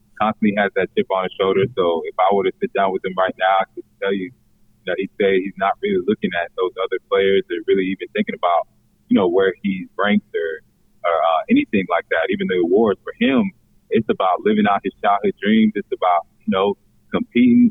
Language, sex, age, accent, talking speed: English, male, 30-49, American, 225 wpm